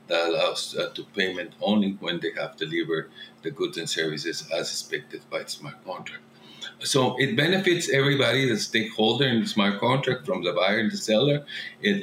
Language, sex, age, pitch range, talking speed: English, male, 50-69, 100-130 Hz, 185 wpm